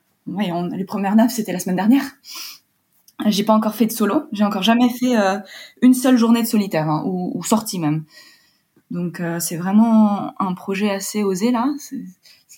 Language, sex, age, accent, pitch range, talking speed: French, female, 20-39, French, 185-225 Hz, 195 wpm